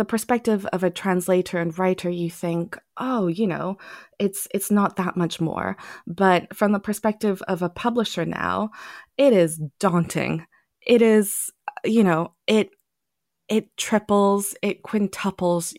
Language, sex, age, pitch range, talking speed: English, female, 20-39, 180-215 Hz, 140 wpm